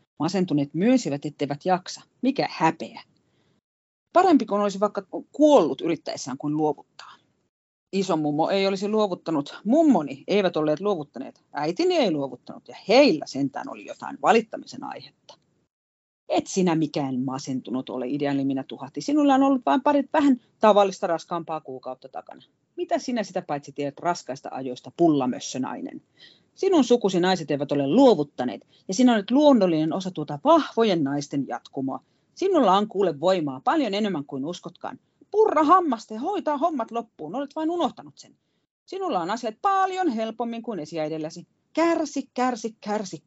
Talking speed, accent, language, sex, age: 140 wpm, native, Finnish, female, 40-59